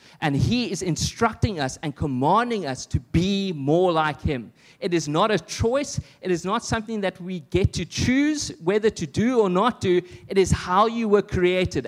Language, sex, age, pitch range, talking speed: English, male, 30-49, 140-200 Hz, 195 wpm